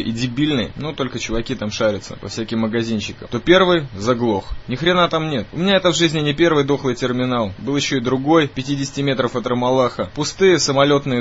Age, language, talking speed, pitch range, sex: 20-39, Russian, 200 wpm, 120-145 Hz, male